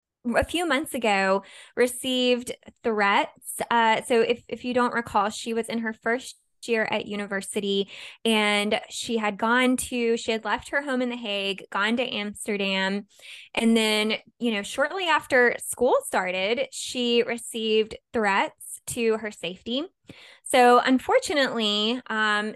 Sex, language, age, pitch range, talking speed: female, English, 20-39, 205-245 Hz, 145 wpm